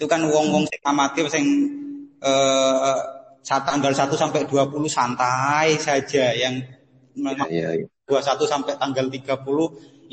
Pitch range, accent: 130-150 Hz, native